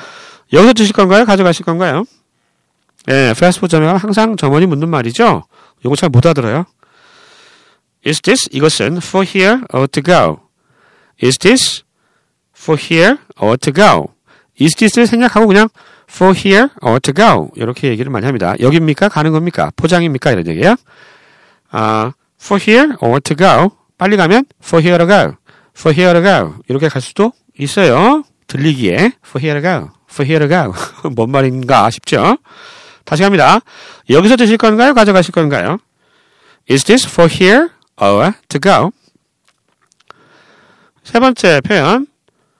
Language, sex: Korean, male